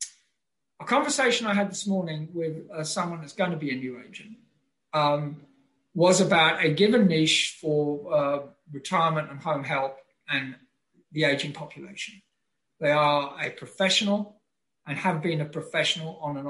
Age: 50-69